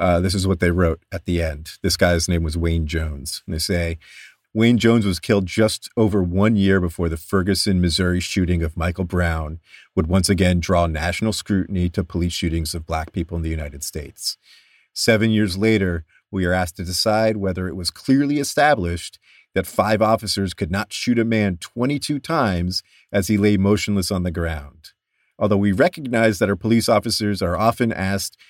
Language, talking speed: English, 185 wpm